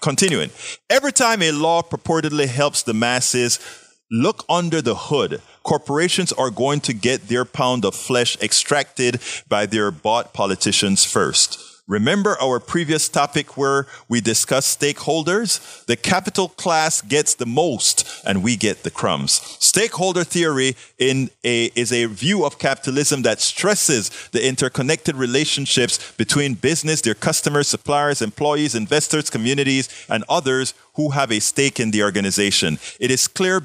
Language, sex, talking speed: English, male, 145 wpm